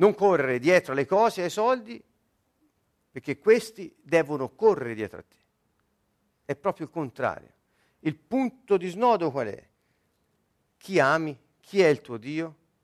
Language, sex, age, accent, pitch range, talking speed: Italian, male, 50-69, native, 125-175 Hz, 145 wpm